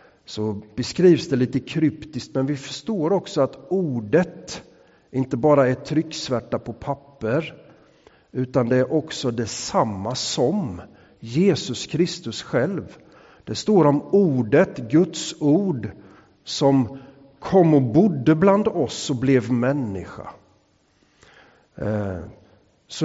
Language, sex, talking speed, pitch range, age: English, male, 110 wpm, 120-155 Hz, 50-69